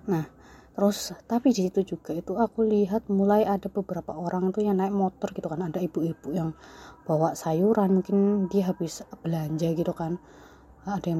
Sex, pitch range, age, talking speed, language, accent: female, 170-210 Hz, 20-39, 170 wpm, Indonesian, native